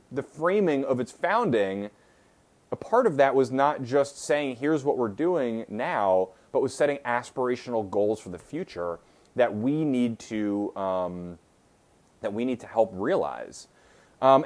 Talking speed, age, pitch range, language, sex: 160 wpm, 30-49, 110-150 Hz, English, male